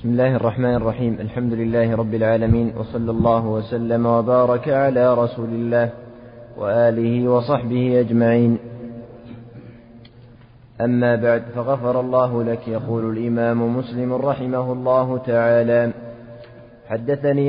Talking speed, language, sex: 105 wpm, Arabic, male